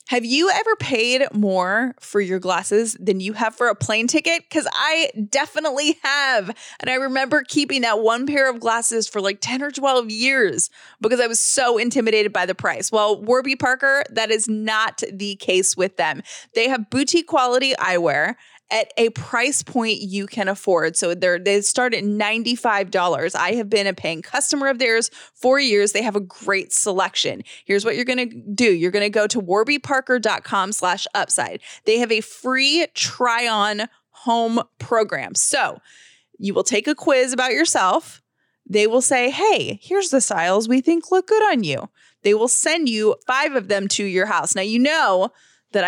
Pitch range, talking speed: 205-265 Hz, 185 wpm